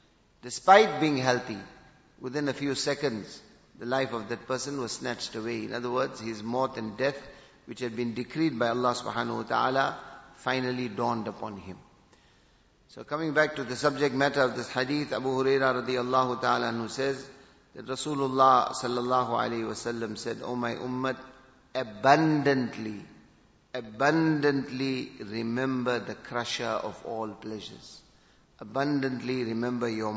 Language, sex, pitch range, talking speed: English, male, 115-140 Hz, 140 wpm